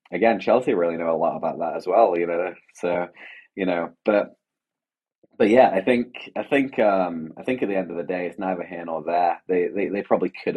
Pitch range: 90-115 Hz